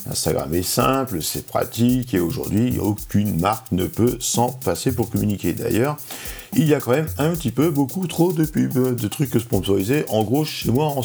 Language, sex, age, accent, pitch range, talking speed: French, male, 50-69, French, 100-145 Hz, 195 wpm